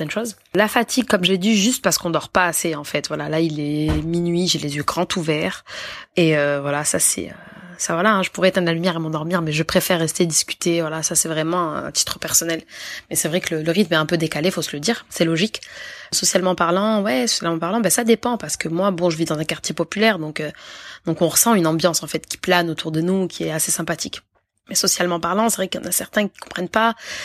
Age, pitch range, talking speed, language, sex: 20-39, 165-215 Hz, 260 wpm, French, female